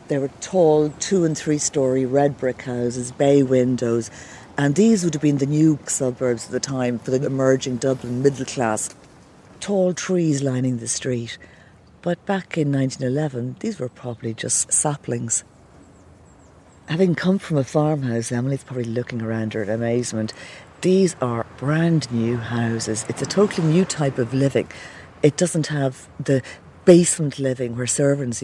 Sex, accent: female, British